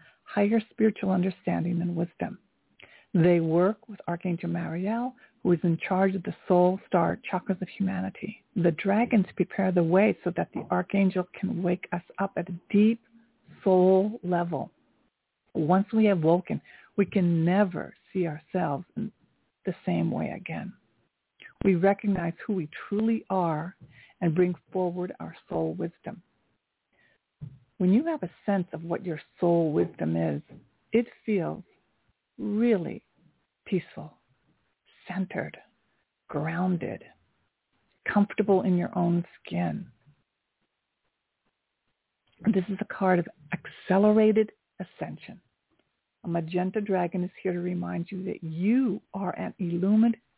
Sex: female